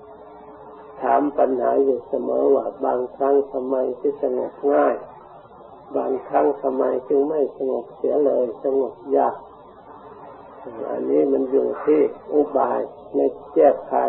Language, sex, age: Thai, male, 50-69